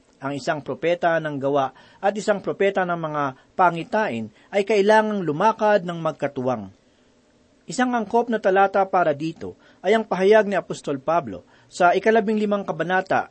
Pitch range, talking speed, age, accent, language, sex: 155-220 Hz, 145 wpm, 40-59, native, Filipino, male